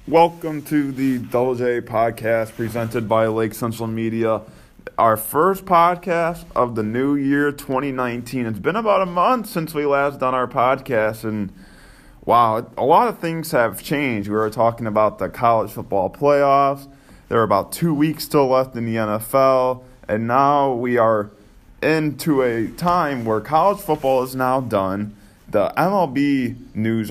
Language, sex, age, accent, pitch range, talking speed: English, male, 20-39, American, 110-140 Hz, 155 wpm